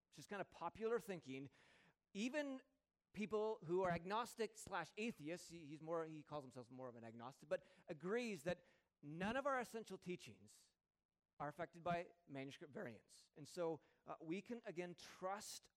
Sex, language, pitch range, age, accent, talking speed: male, English, 155-220 Hz, 40-59, American, 160 wpm